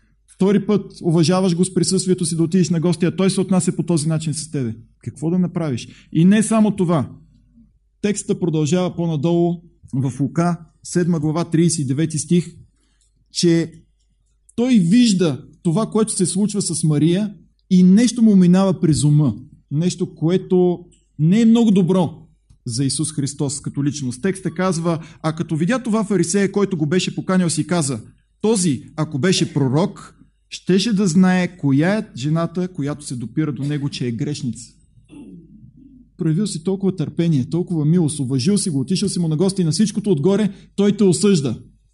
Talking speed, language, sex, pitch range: 160 wpm, Bulgarian, male, 145-185 Hz